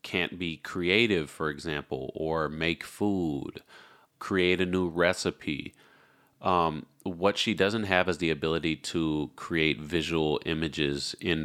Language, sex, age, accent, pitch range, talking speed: English, male, 30-49, American, 80-95 Hz, 130 wpm